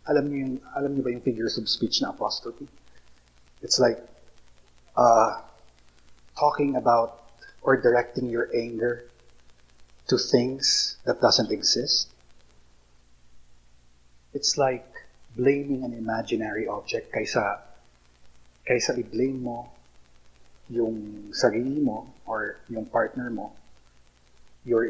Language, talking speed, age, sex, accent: Filipino, 105 wpm, 30-49, male, native